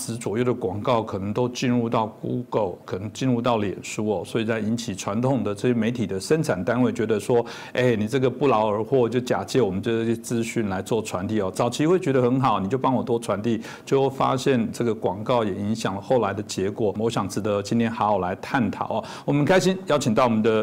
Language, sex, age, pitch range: Chinese, male, 50-69, 110-130 Hz